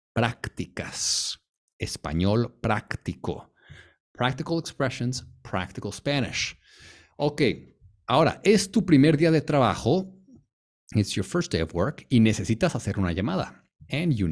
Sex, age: male, 50-69